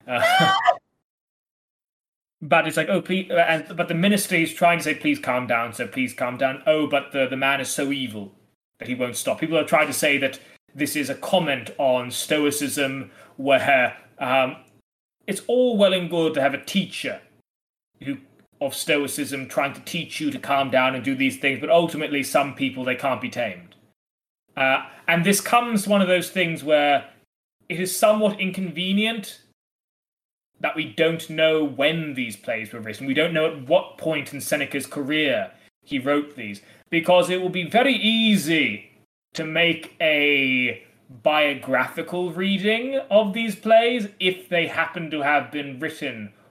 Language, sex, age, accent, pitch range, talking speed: English, male, 20-39, British, 135-180 Hz, 170 wpm